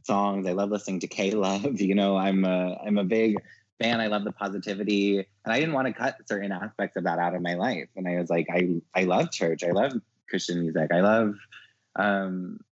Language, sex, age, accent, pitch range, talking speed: English, male, 20-39, American, 85-105 Hz, 225 wpm